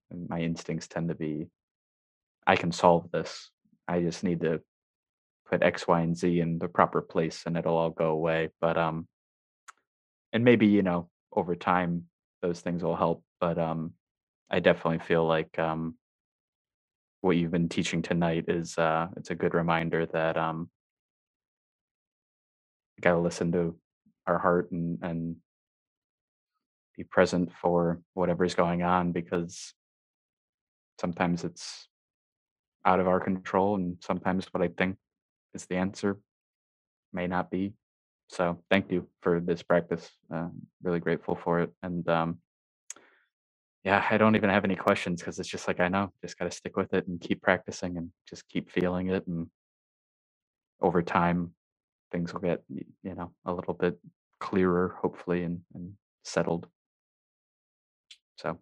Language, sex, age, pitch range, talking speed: English, male, 20-39, 85-90 Hz, 150 wpm